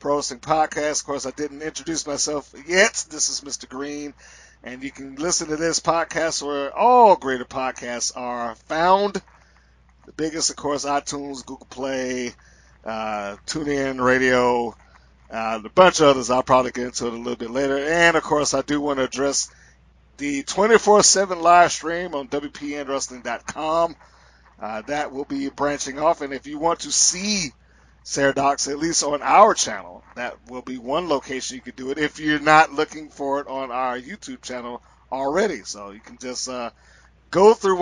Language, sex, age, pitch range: English, male, 50-69, 125-155 Hz